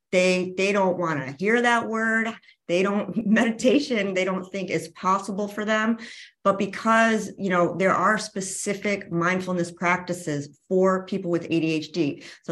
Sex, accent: female, American